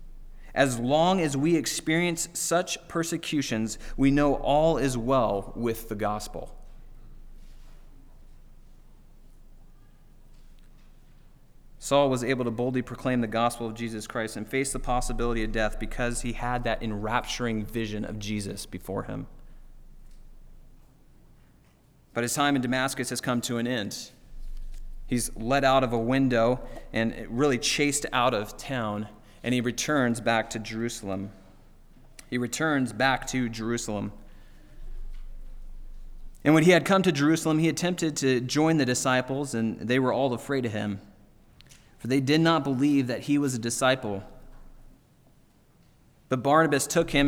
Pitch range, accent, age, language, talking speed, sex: 115-140 Hz, American, 30-49, English, 140 wpm, male